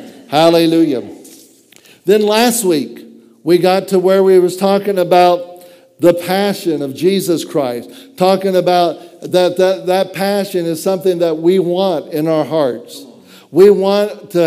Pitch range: 170-190 Hz